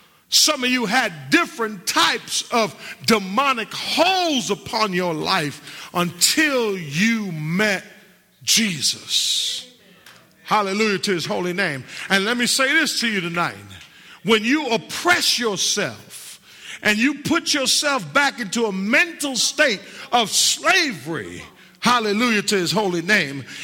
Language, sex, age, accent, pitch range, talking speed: English, male, 50-69, American, 190-270 Hz, 125 wpm